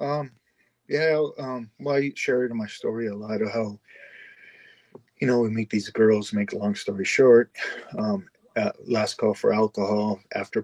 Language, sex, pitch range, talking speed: English, male, 110-125 Hz, 170 wpm